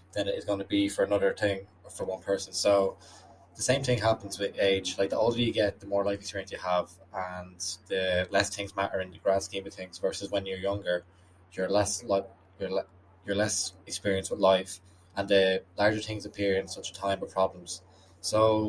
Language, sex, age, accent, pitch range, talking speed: English, male, 20-39, Irish, 95-100 Hz, 205 wpm